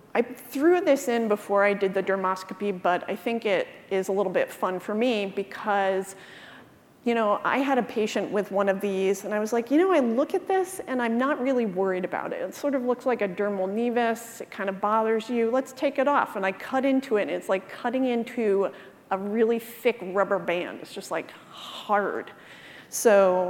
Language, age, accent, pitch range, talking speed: English, 30-49, American, 190-230 Hz, 215 wpm